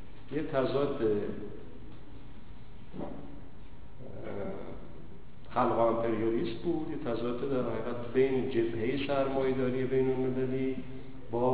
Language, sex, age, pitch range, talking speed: Persian, male, 50-69, 115-145 Hz, 85 wpm